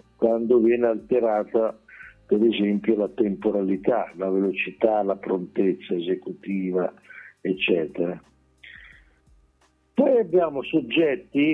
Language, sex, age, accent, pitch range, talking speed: Italian, male, 60-79, native, 100-125 Hz, 85 wpm